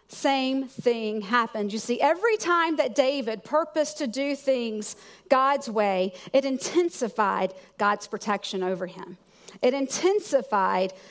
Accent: American